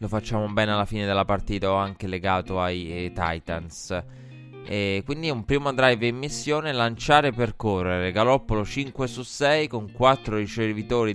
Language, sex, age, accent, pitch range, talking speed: Italian, male, 20-39, native, 95-115 Hz, 160 wpm